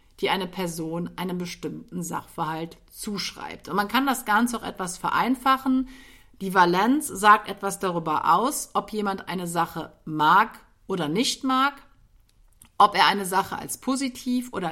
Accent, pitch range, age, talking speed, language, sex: German, 180-245 Hz, 50-69, 145 wpm, German, female